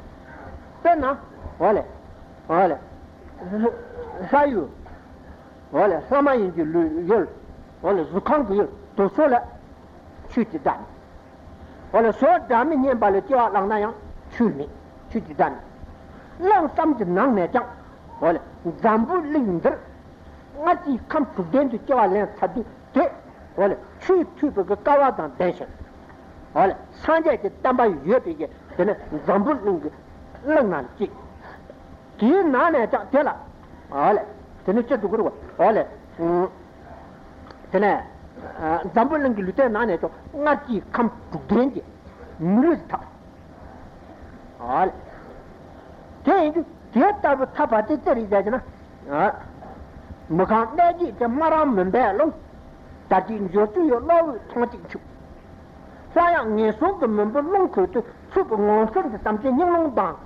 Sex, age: male, 60-79